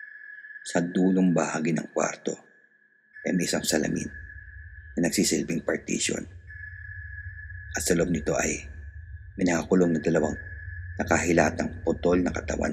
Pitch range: 80-90 Hz